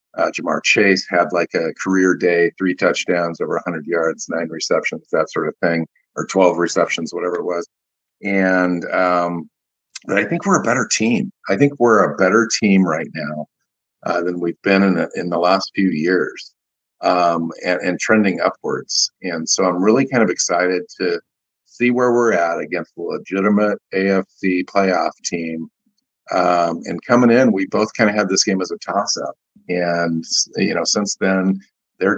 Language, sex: English, male